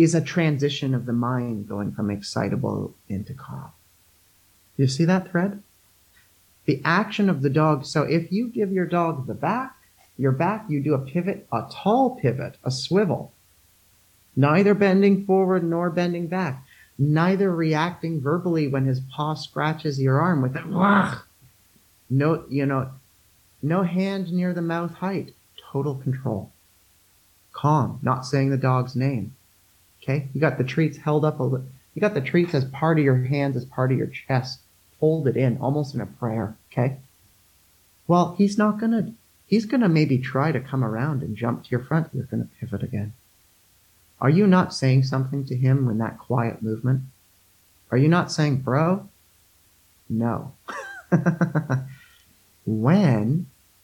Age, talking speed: 40-59, 160 wpm